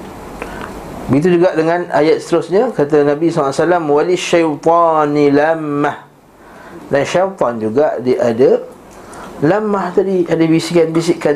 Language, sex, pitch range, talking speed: Malay, male, 125-155 Hz, 95 wpm